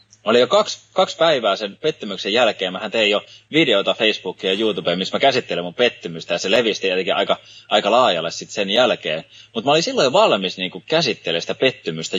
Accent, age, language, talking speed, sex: native, 20-39, Finnish, 190 wpm, male